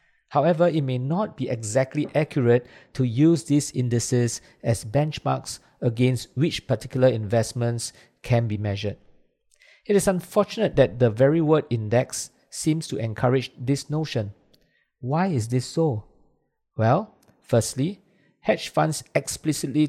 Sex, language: male, English